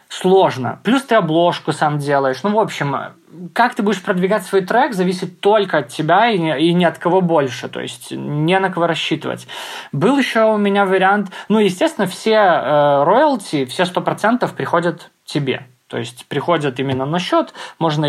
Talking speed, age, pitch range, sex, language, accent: 170 wpm, 20-39, 145-190 Hz, male, Russian, native